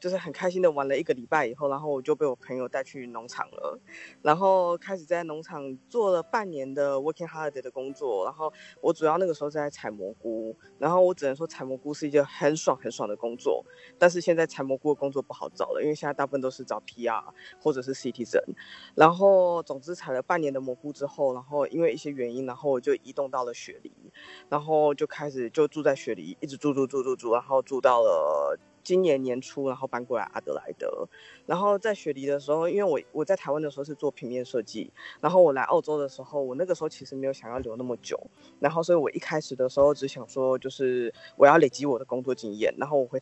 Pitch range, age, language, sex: 130-165 Hz, 20-39, Chinese, female